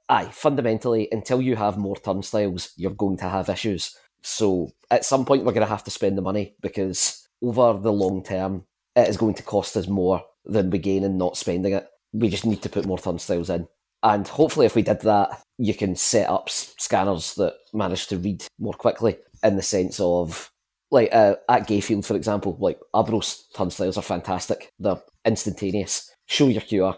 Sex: male